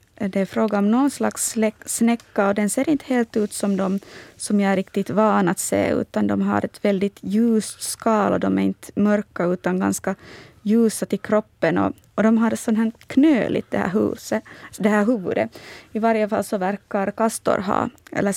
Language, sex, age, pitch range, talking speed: Swedish, female, 20-39, 195-235 Hz, 205 wpm